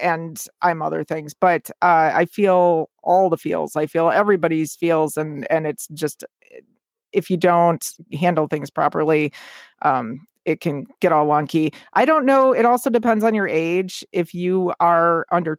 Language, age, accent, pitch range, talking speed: English, 40-59, American, 160-195 Hz, 170 wpm